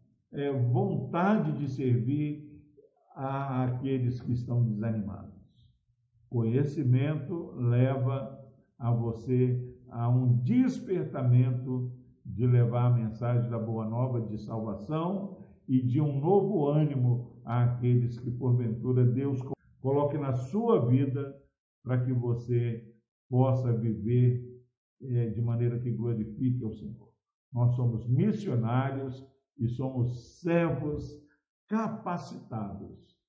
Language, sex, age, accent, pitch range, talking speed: Portuguese, male, 60-79, Brazilian, 120-140 Hz, 100 wpm